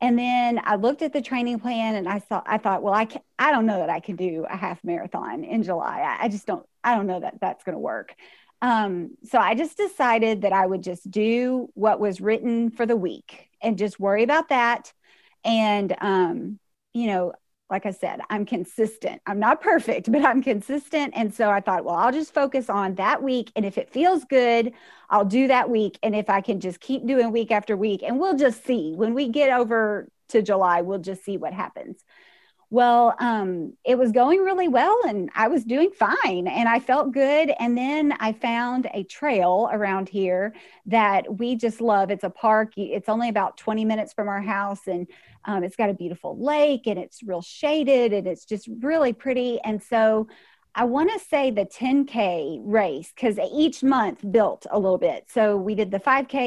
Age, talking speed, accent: 30-49, 205 wpm, American